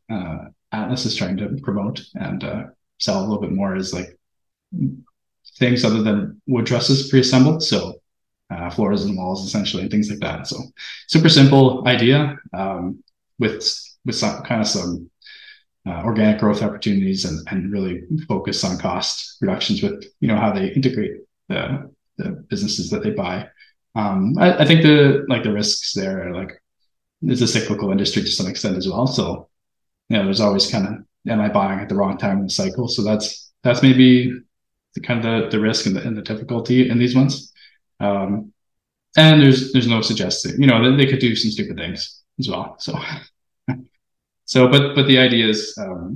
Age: 20-39